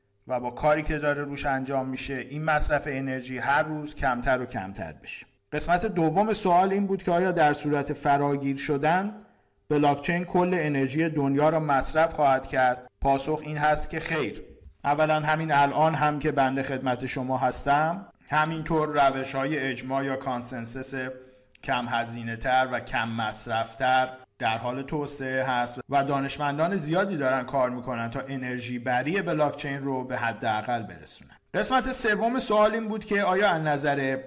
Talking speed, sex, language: 155 wpm, male, Persian